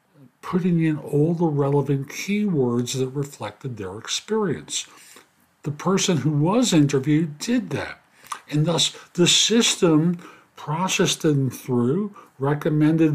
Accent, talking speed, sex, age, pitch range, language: American, 115 wpm, male, 50-69, 135-175 Hz, English